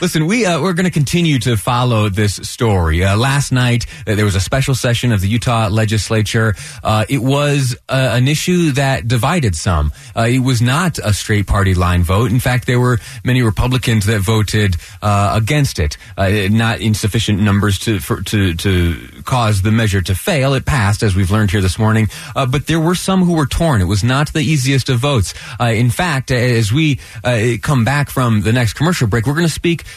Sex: male